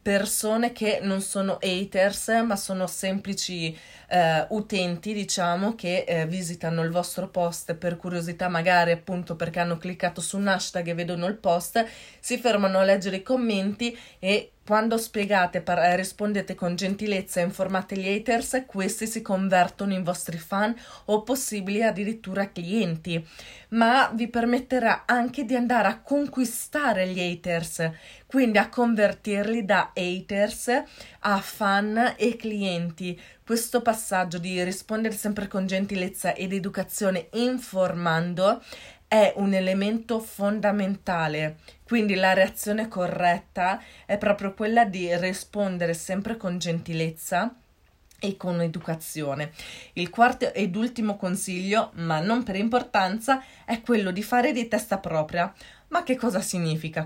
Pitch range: 180-220 Hz